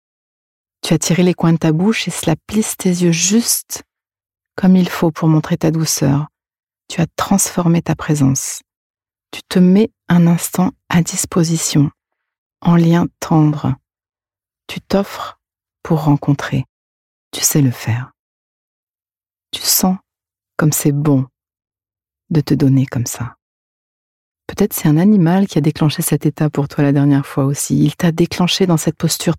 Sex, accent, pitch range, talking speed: female, French, 140-170 Hz, 155 wpm